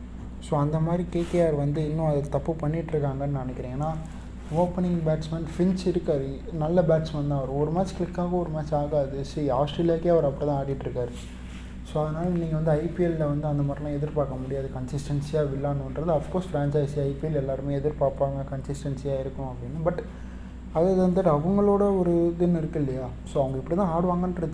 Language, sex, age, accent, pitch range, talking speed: Tamil, male, 20-39, native, 135-170 Hz, 160 wpm